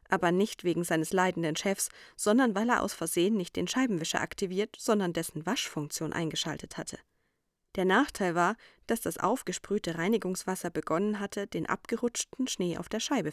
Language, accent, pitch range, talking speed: German, German, 170-210 Hz, 160 wpm